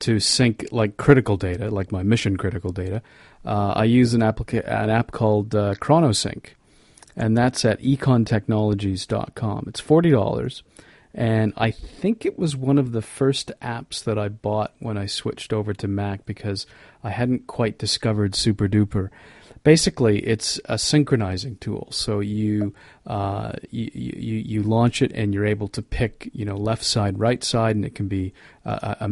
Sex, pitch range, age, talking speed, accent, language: male, 100-115 Hz, 40-59, 170 wpm, American, English